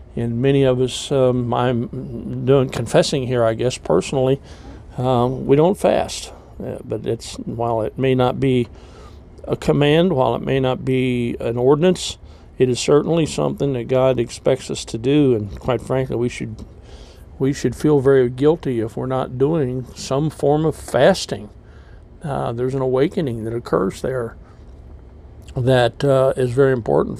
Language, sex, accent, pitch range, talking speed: English, male, American, 115-140 Hz, 160 wpm